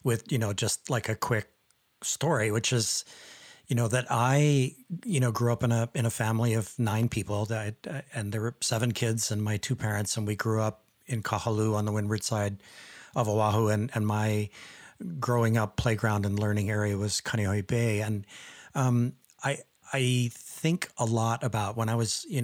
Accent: American